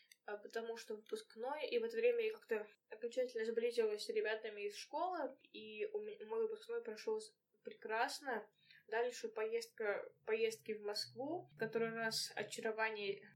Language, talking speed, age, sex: Russian, 140 wpm, 10-29, female